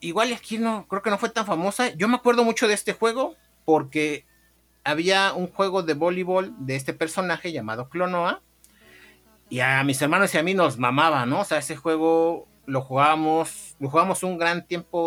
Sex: male